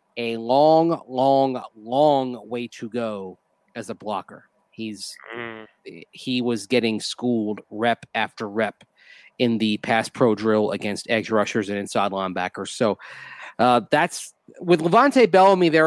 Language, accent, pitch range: English, American, 125-155 Hz